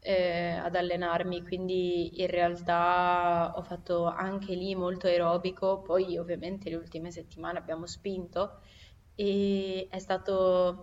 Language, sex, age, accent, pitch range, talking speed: Italian, female, 20-39, native, 170-185 Hz, 120 wpm